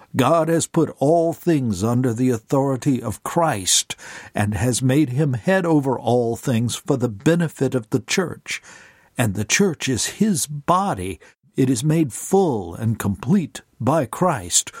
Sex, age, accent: male, 60-79, American